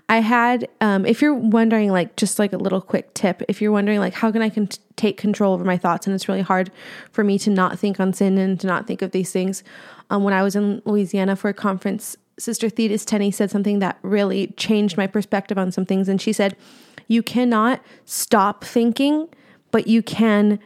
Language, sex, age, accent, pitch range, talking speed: English, female, 20-39, American, 195-240 Hz, 225 wpm